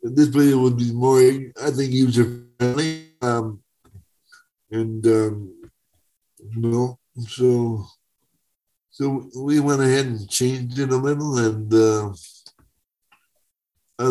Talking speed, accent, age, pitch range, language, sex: 105 wpm, American, 60-79, 115-140 Hz, English, male